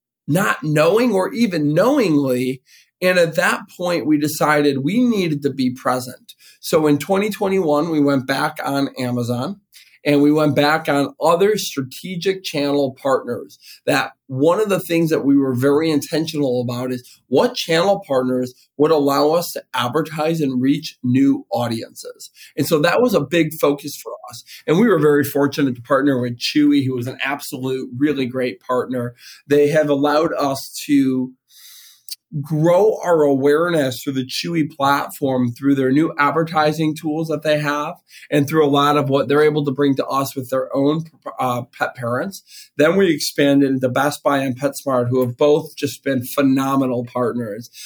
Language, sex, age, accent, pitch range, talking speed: English, male, 40-59, American, 135-155 Hz, 170 wpm